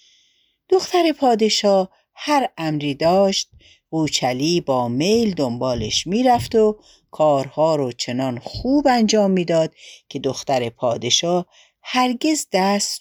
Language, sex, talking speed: Persian, female, 100 wpm